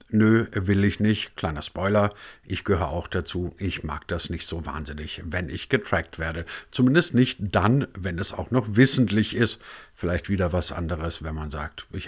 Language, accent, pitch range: German, German, 85-115 Hz